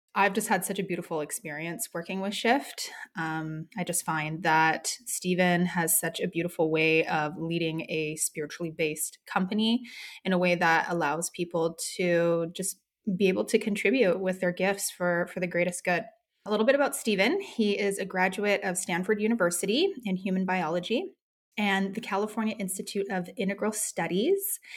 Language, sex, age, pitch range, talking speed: English, female, 20-39, 170-200 Hz, 165 wpm